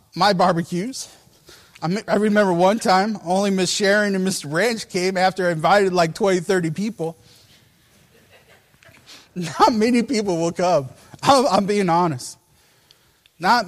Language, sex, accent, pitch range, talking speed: English, male, American, 145-200 Hz, 125 wpm